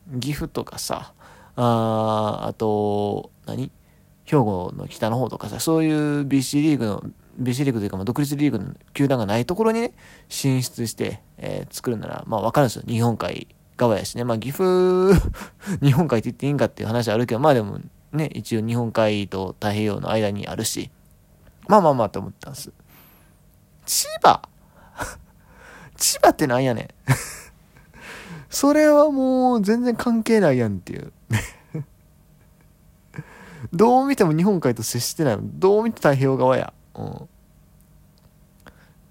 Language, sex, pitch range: Japanese, male, 115-165 Hz